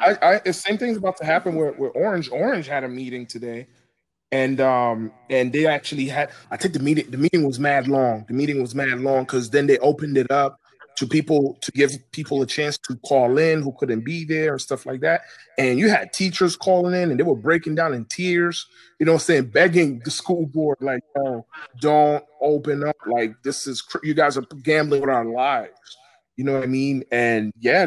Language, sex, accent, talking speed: English, male, American, 225 wpm